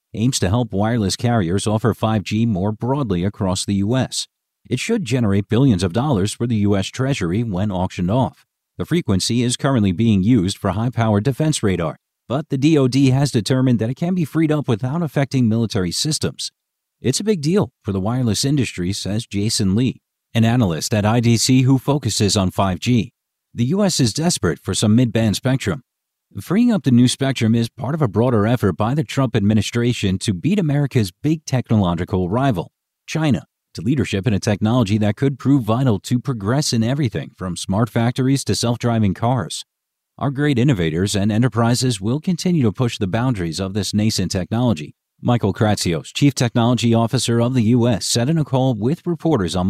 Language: English